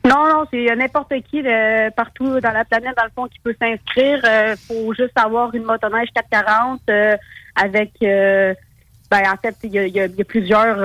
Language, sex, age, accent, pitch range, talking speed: French, female, 30-49, Canadian, 205-235 Hz, 215 wpm